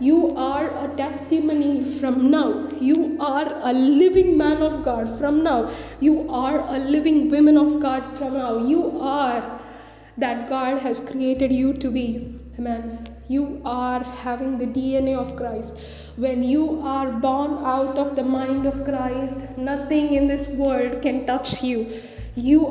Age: 20-39